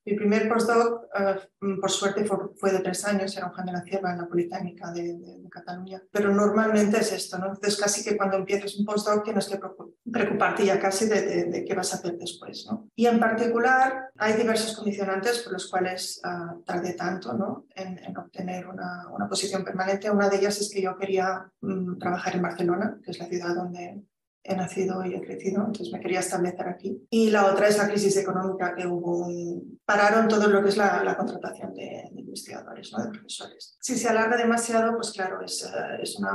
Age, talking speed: 20-39, 215 wpm